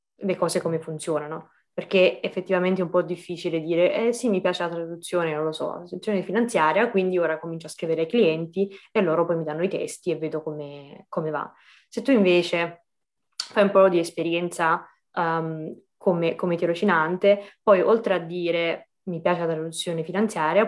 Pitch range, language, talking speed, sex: 160-185 Hz, Italian, 185 wpm, female